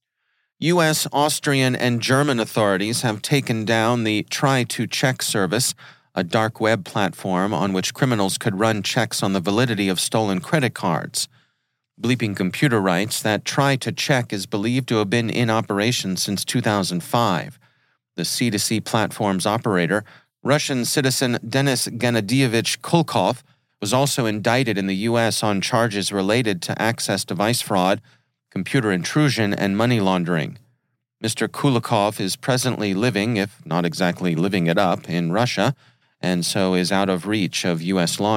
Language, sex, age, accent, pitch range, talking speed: English, male, 40-59, American, 100-125 Hz, 150 wpm